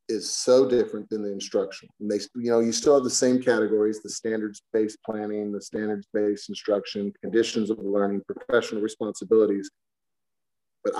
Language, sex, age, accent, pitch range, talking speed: English, male, 30-49, American, 105-125 Hz, 155 wpm